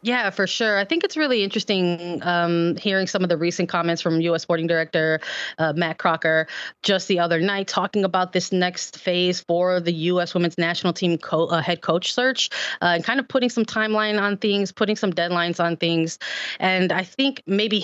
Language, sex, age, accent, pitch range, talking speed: English, female, 20-39, American, 170-195 Hz, 200 wpm